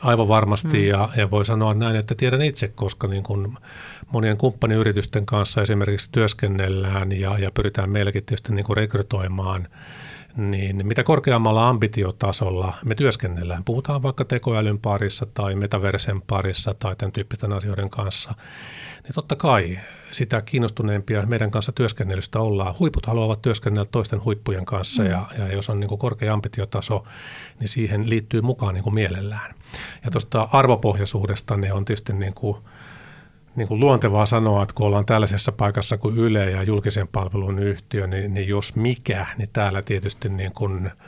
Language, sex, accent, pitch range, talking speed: Finnish, male, native, 100-115 Hz, 145 wpm